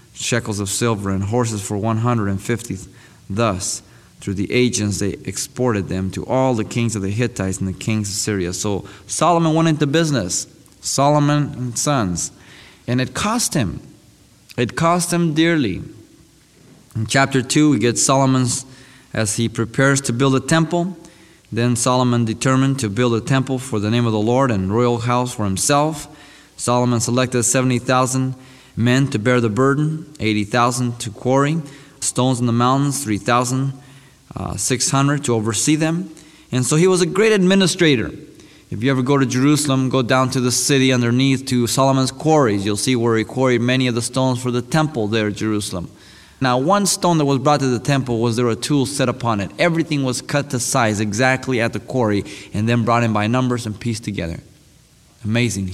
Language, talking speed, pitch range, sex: English, 175 wpm, 110-140 Hz, male